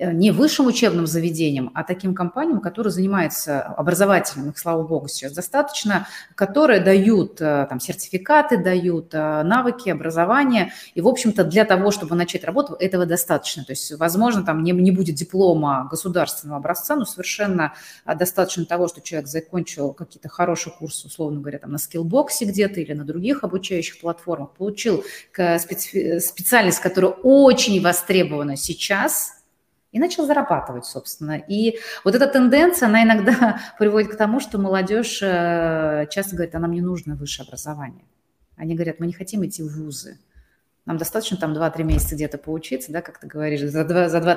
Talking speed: 155 wpm